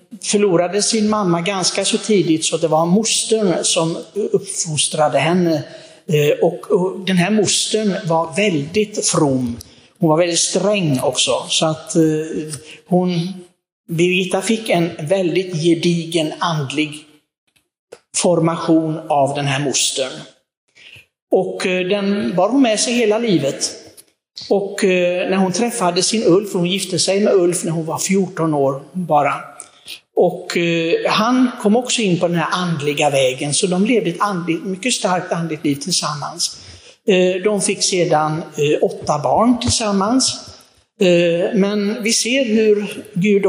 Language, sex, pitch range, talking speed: Swedish, male, 165-205 Hz, 135 wpm